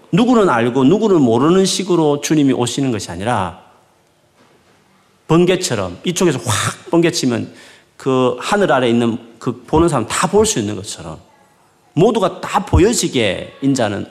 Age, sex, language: 40-59, male, Korean